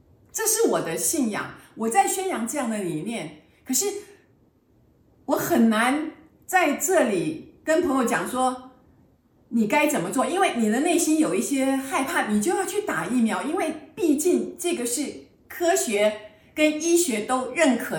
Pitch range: 200-310 Hz